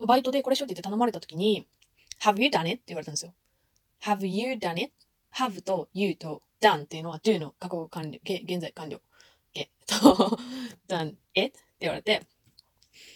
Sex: female